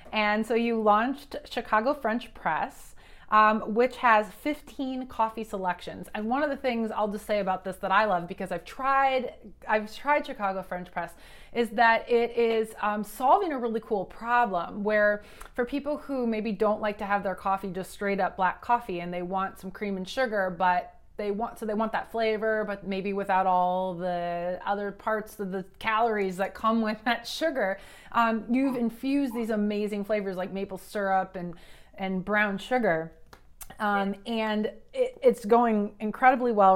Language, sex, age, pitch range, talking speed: English, female, 20-39, 190-235 Hz, 180 wpm